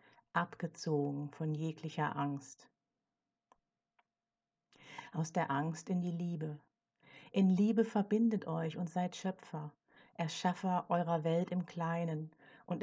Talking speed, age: 110 wpm, 50-69